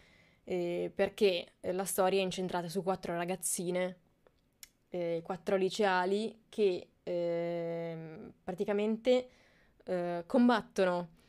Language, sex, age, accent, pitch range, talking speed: Italian, female, 20-39, native, 180-225 Hz, 90 wpm